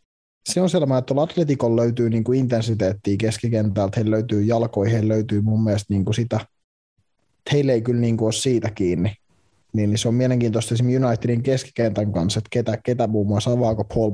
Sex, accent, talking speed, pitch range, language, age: male, native, 185 wpm, 105-125 Hz, Finnish, 20-39